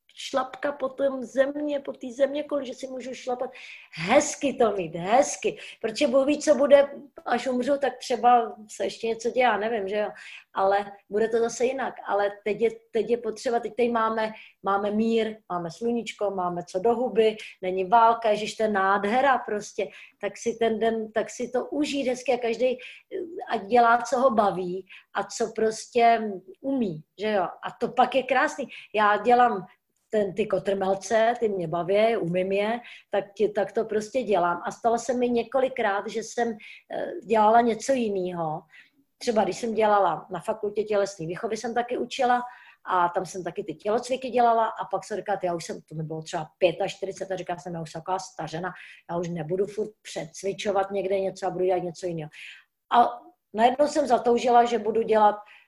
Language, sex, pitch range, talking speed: Slovak, female, 195-245 Hz, 180 wpm